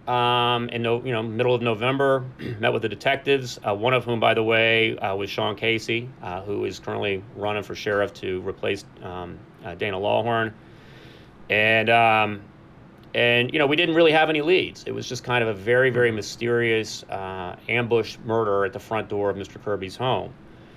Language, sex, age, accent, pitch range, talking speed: English, male, 30-49, American, 100-120 Hz, 195 wpm